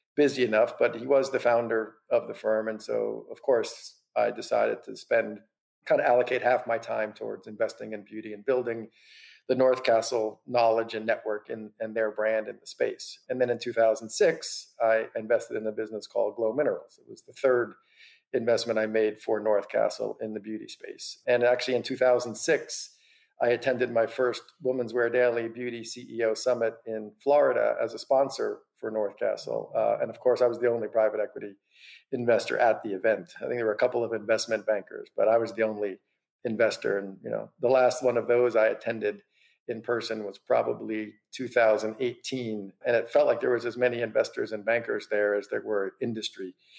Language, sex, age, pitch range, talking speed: English, male, 50-69, 110-135 Hz, 190 wpm